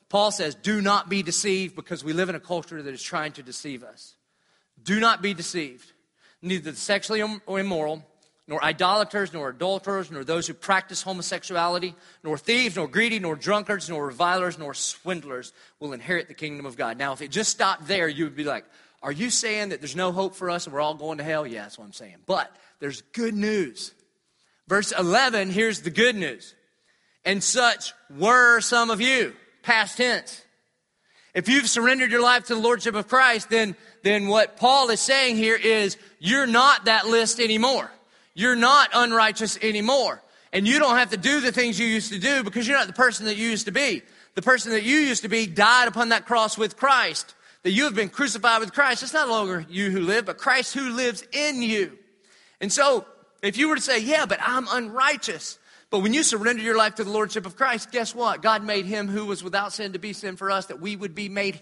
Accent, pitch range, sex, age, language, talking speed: American, 180-240 Hz, male, 40-59, English, 215 wpm